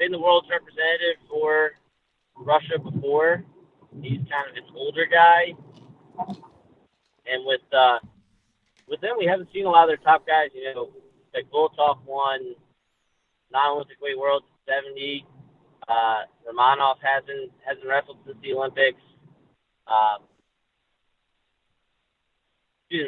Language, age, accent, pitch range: English, 30-49, American, 135-190 Hz